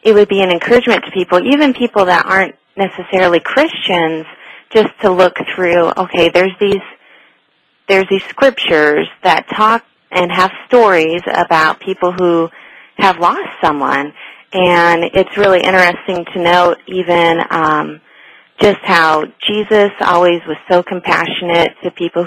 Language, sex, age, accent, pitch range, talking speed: English, female, 30-49, American, 165-200 Hz, 135 wpm